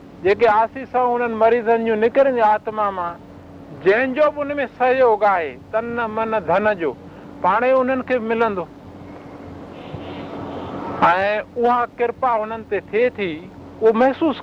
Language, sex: Hindi, male